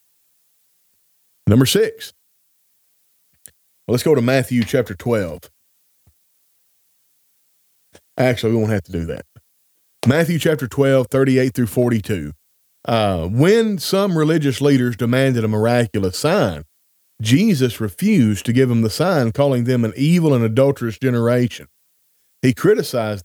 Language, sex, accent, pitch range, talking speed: English, male, American, 115-155 Hz, 120 wpm